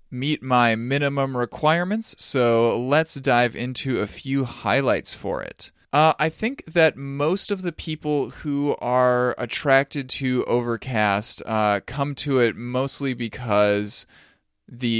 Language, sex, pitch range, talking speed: English, male, 100-140 Hz, 130 wpm